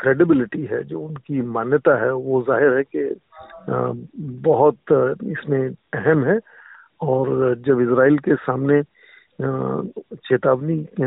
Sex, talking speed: male, 110 wpm